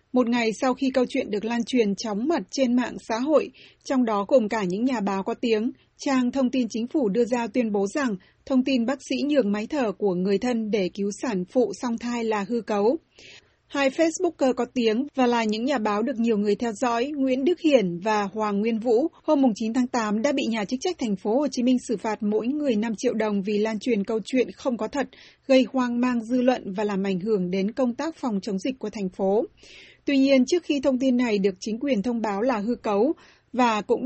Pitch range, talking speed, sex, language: 215-260 Hz, 245 wpm, female, Vietnamese